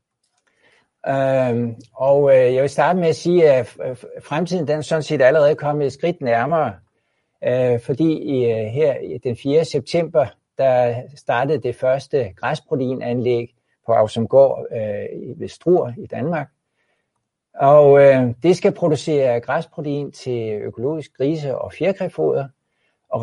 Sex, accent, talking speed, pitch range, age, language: male, native, 130 wpm, 120-155 Hz, 60-79, Danish